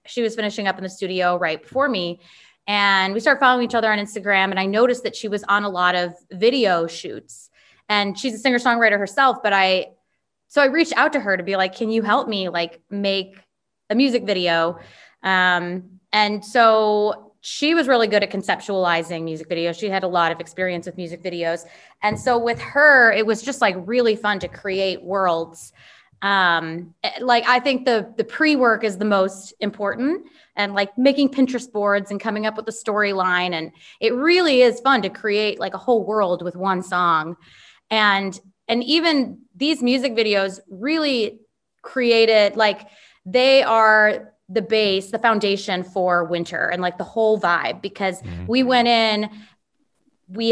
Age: 20-39